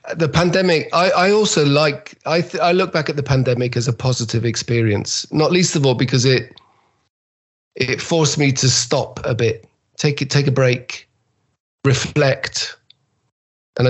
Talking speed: 165 wpm